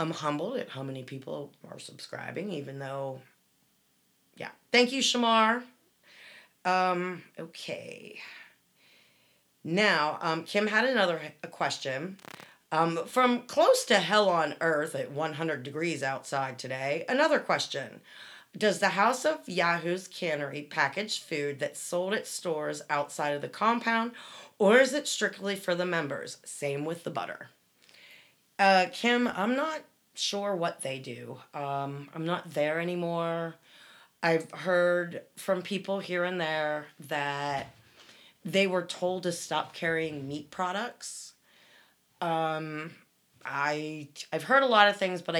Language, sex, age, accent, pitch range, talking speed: English, female, 30-49, American, 150-200 Hz, 135 wpm